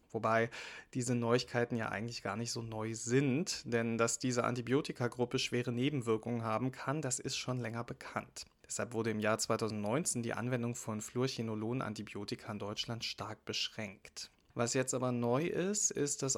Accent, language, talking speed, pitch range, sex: German, German, 160 wpm, 115-135 Hz, male